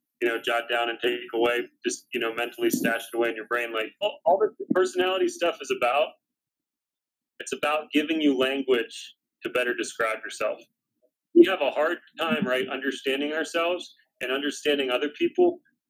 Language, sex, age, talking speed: English, male, 30-49, 170 wpm